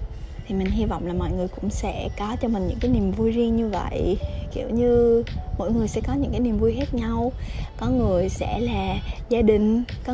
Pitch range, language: 205-255 Hz, Vietnamese